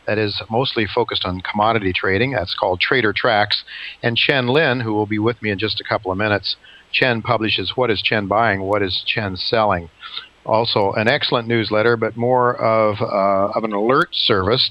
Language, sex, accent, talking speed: English, male, American, 190 wpm